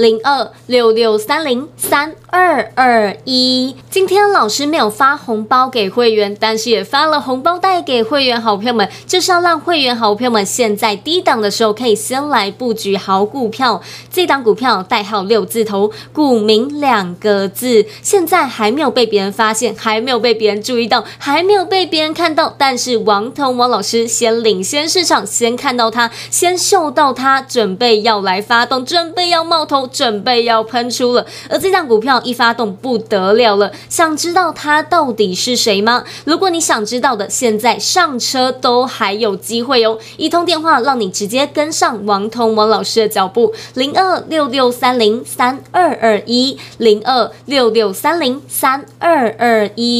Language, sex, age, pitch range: Chinese, female, 20-39, 220-295 Hz